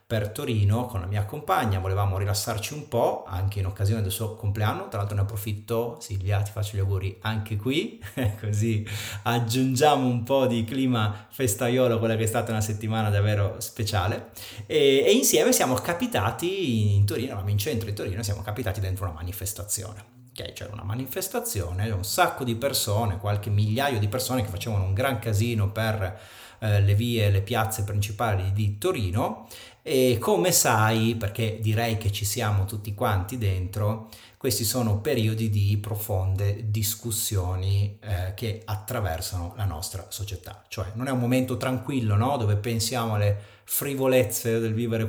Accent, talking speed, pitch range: native, 160 wpm, 100-120 Hz